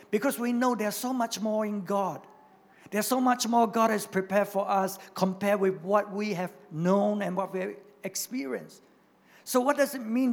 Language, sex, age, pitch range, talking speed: English, male, 50-69, 190-240 Hz, 200 wpm